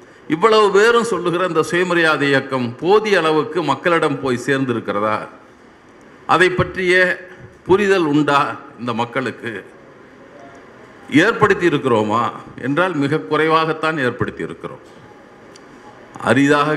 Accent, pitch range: native, 135-175 Hz